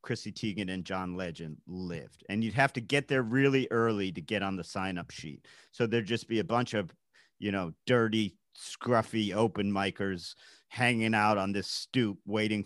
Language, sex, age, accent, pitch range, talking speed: English, male, 40-59, American, 105-145 Hz, 190 wpm